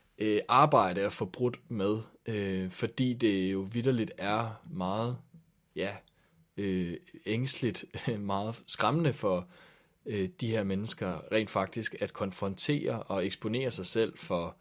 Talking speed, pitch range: 120 wpm, 95-115 Hz